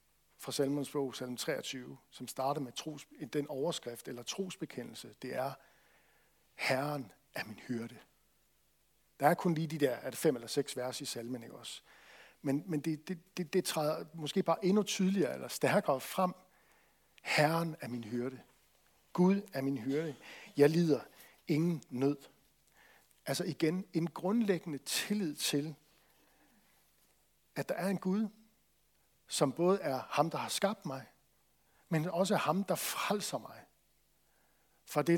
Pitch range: 135-170 Hz